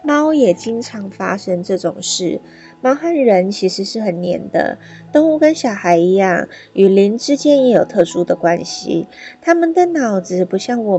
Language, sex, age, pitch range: Chinese, female, 20-39, 185-255 Hz